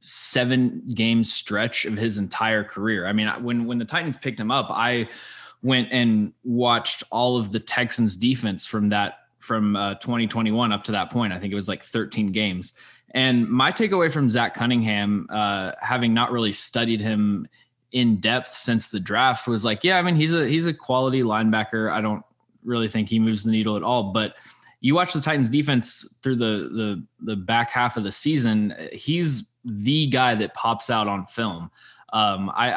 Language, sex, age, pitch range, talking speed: English, male, 20-39, 105-125 Hz, 190 wpm